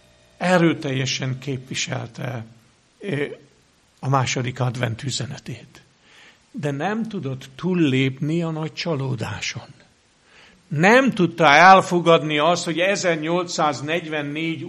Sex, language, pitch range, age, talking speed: male, Hungarian, 135-185 Hz, 60-79, 80 wpm